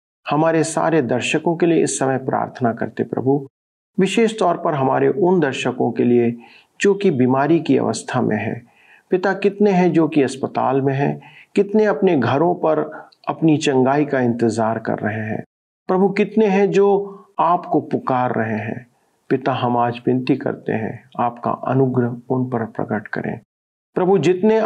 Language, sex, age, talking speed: Hindi, male, 50-69, 160 wpm